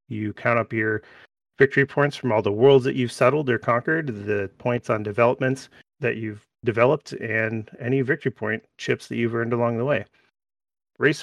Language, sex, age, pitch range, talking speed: English, male, 30-49, 105-120 Hz, 180 wpm